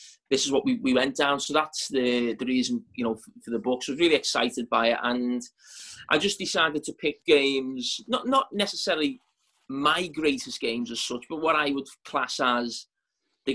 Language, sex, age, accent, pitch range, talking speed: English, male, 30-49, British, 120-140 Hz, 210 wpm